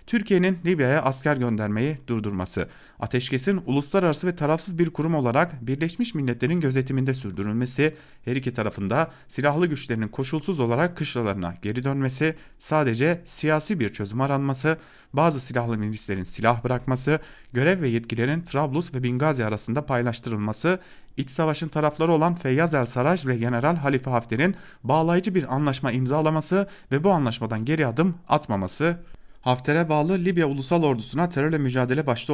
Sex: male